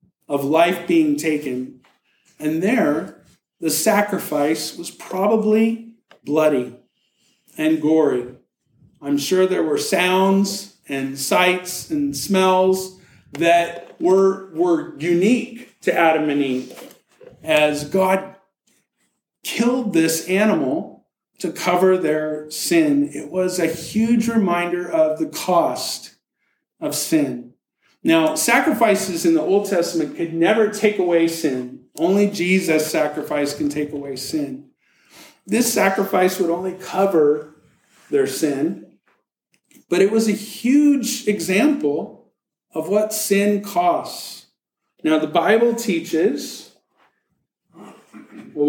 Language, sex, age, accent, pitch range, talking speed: English, male, 50-69, American, 150-210 Hz, 110 wpm